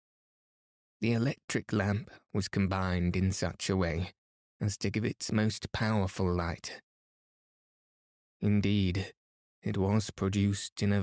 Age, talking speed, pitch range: 20-39, 120 wpm, 95-105 Hz